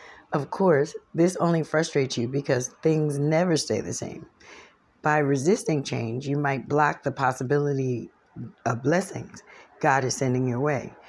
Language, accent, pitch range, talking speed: English, American, 125-155 Hz, 145 wpm